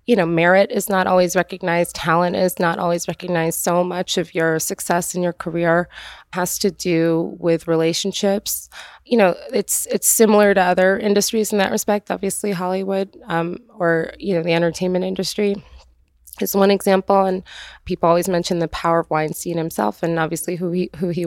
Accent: American